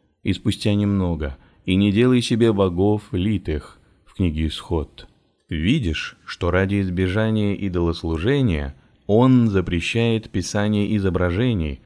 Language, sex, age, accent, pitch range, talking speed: Russian, male, 30-49, native, 85-110 Hz, 110 wpm